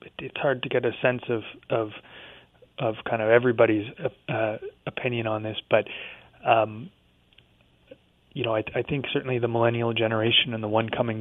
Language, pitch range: English, 105-120 Hz